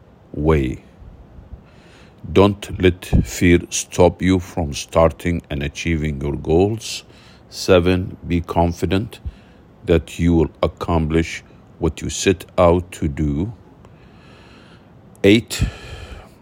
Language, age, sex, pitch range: English, 50-69, male, 80-95 Hz